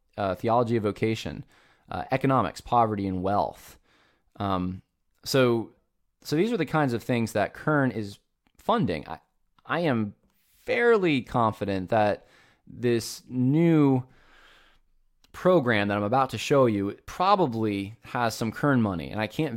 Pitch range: 95-125 Hz